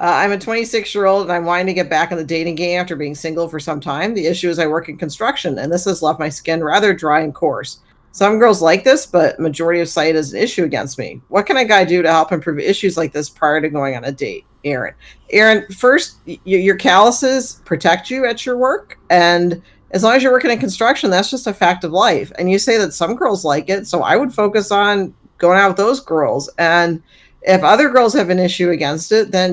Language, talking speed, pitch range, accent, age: English, 245 wpm, 165-215 Hz, American, 50-69